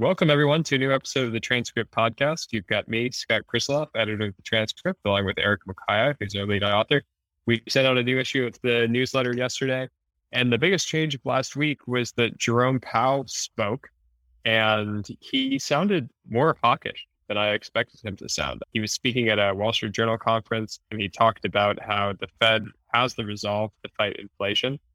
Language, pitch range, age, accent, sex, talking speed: English, 100-120 Hz, 10-29, American, male, 195 wpm